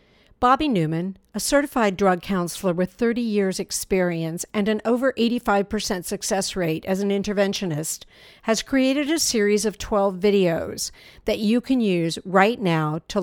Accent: American